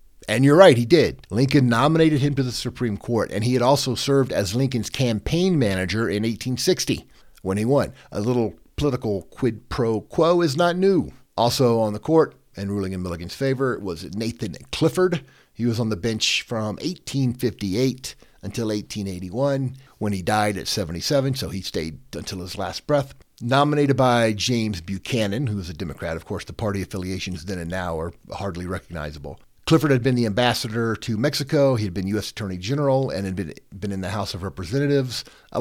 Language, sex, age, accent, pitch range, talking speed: English, male, 50-69, American, 100-135 Hz, 185 wpm